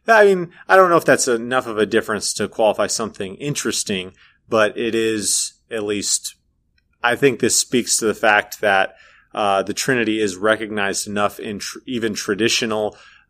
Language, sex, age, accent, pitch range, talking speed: English, male, 30-49, American, 95-120 Hz, 170 wpm